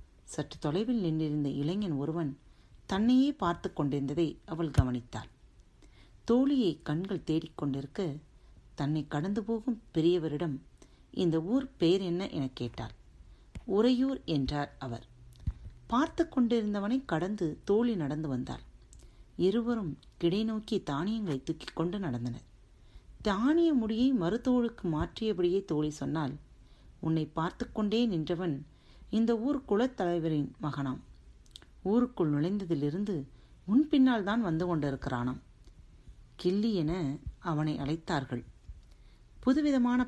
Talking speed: 95 wpm